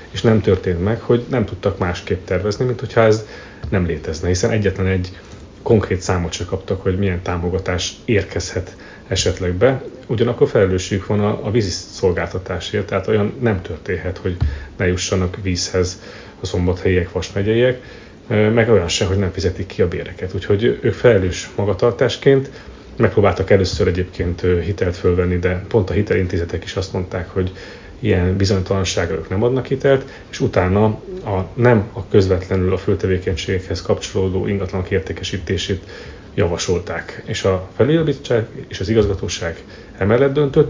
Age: 30-49